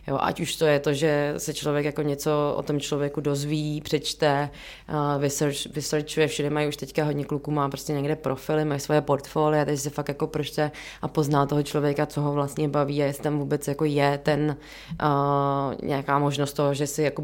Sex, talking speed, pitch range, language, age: female, 210 wpm, 140-150 Hz, Czech, 20-39